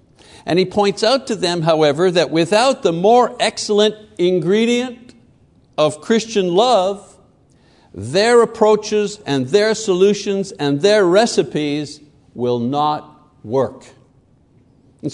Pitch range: 145-210 Hz